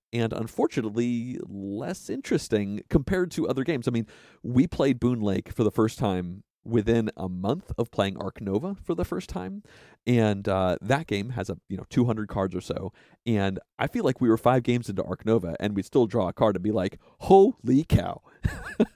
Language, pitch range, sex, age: English, 105-140 Hz, male, 40-59